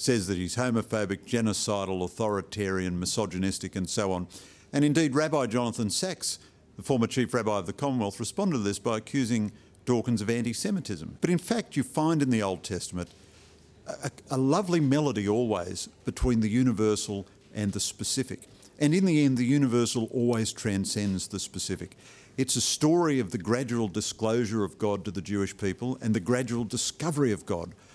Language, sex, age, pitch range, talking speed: English, male, 50-69, 100-125 Hz, 170 wpm